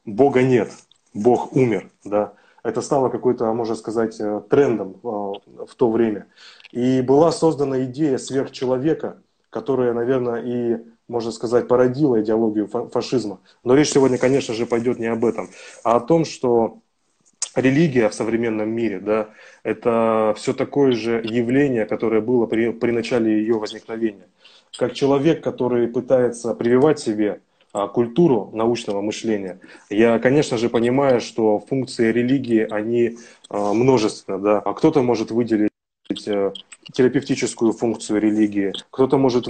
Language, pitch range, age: Russian, 110-125 Hz, 20-39